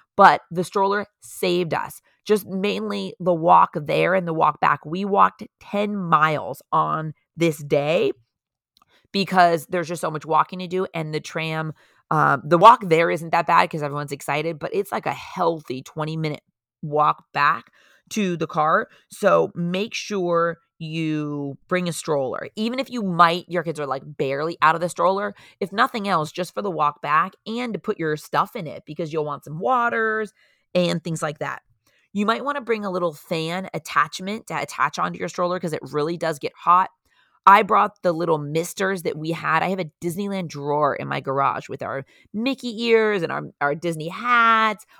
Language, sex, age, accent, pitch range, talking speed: English, female, 30-49, American, 155-200 Hz, 190 wpm